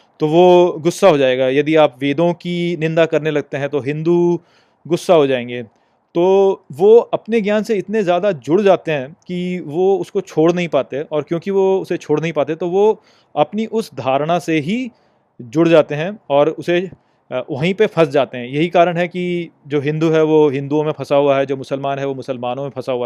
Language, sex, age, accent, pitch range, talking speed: Hindi, male, 30-49, native, 145-180 Hz, 205 wpm